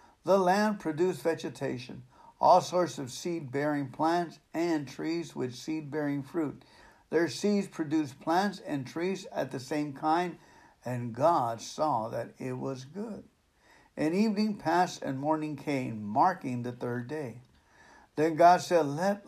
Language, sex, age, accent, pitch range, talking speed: English, male, 60-79, American, 140-180 Hz, 140 wpm